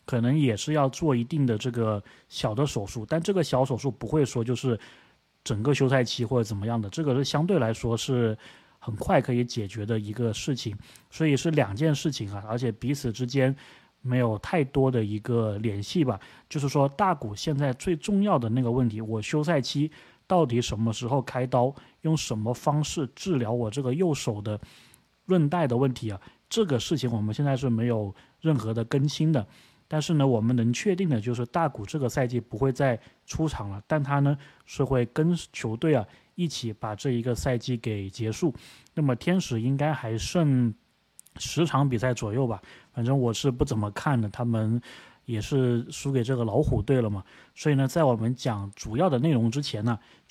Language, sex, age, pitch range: Chinese, male, 30-49, 115-145 Hz